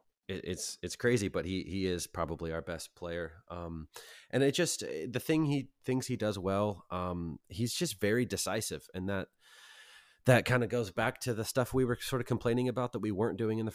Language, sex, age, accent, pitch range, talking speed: English, male, 30-49, American, 85-110 Hz, 215 wpm